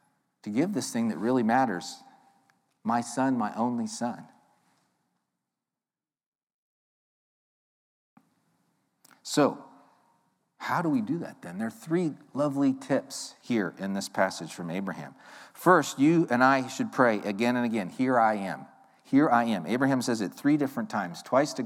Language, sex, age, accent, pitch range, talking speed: English, male, 50-69, American, 120-170 Hz, 145 wpm